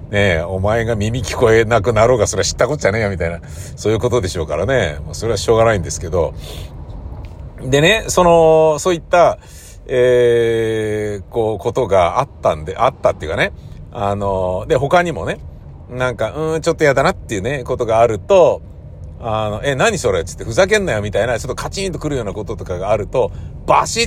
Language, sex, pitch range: Japanese, male, 85-125 Hz